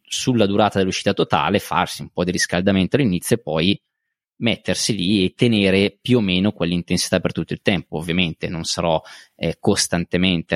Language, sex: Italian, male